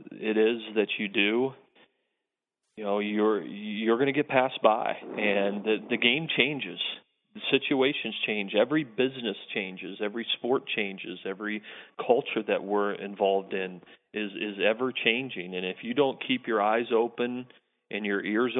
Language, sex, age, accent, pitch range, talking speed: English, male, 40-59, American, 105-120 Hz, 160 wpm